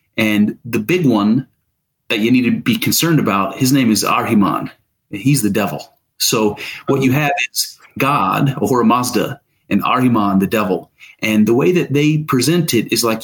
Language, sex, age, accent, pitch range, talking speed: English, male, 30-49, American, 110-140 Hz, 175 wpm